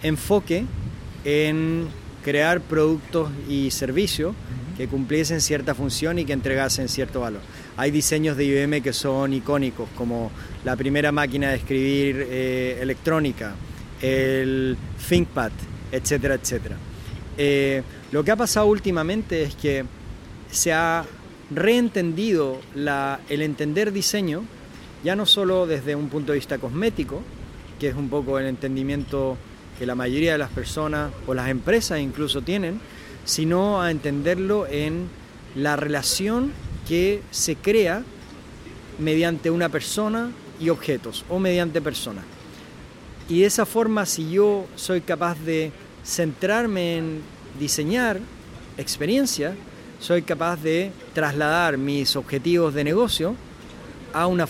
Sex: male